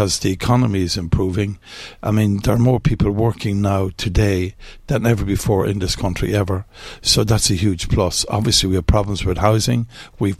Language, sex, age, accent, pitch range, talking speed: English, male, 60-79, Irish, 95-115 Hz, 190 wpm